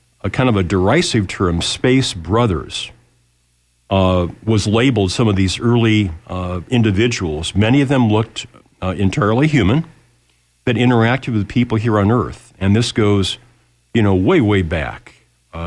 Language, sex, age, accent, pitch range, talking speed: English, male, 50-69, American, 95-125 Hz, 155 wpm